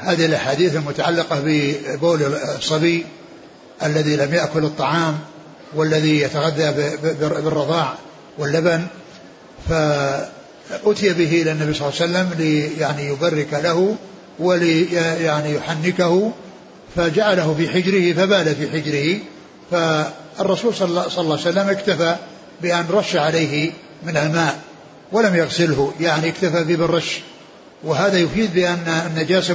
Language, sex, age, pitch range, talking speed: Arabic, male, 60-79, 155-180 Hz, 110 wpm